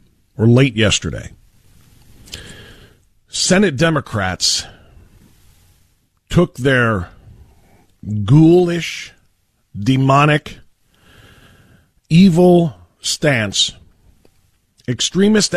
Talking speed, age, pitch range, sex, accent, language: 45 wpm, 50-69, 95-150 Hz, male, American, English